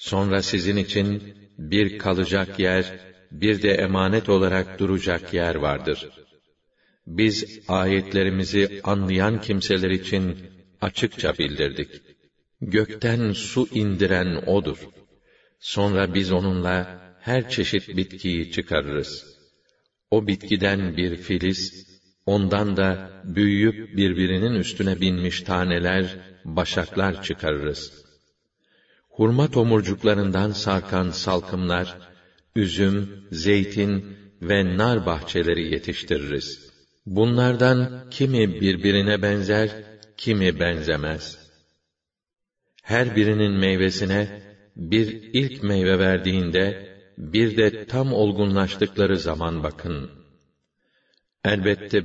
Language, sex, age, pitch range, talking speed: Arabic, male, 50-69, 90-105 Hz, 85 wpm